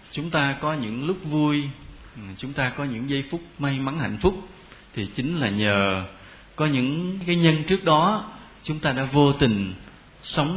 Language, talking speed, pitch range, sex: Vietnamese, 180 wpm, 105-145 Hz, male